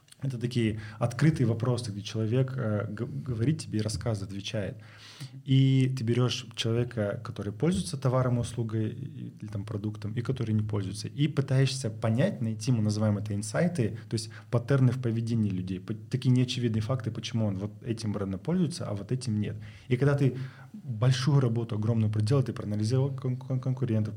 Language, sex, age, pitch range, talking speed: Russian, male, 20-39, 110-130 Hz, 155 wpm